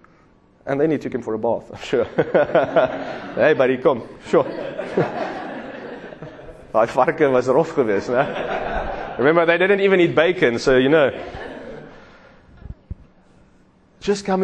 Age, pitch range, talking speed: 30-49, 140-180 Hz, 105 wpm